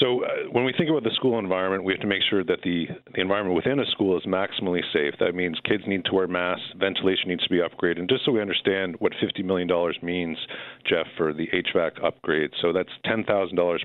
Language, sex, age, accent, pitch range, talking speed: English, male, 50-69, American, 85-100 Hz, 225 wpm